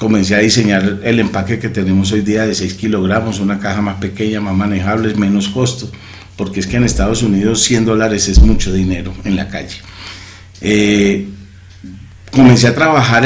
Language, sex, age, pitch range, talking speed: Spanish, male, 40-59, 95-115 Hz, 170 wpm